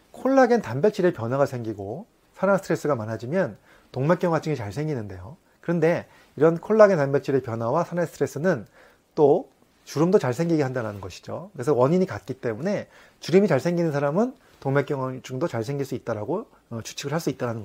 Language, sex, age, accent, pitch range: Korean, male, 30-49, native, 120-175 Hz